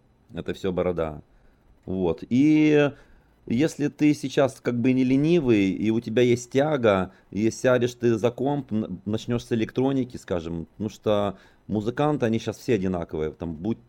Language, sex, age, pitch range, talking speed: Russian, male, 30-49, 95-125 Hz, 150 wpm